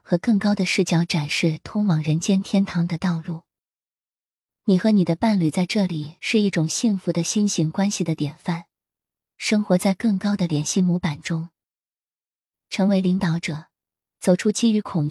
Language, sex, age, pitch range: Chinese, female, 20-39, 165-195 Hz